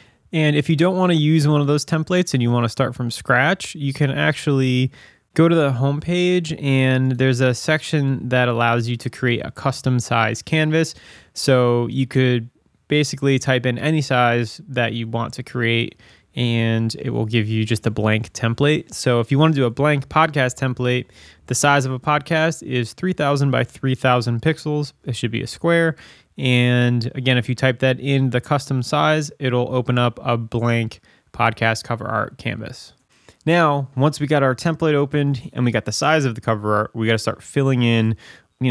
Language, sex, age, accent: English, male, 20-39, American